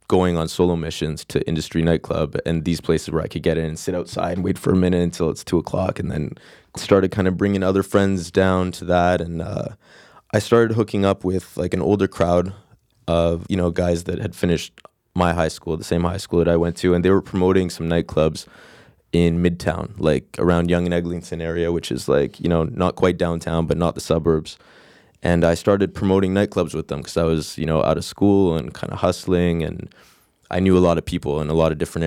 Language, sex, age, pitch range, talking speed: English, male, 20-39, 85-100 Hz, 230 wpm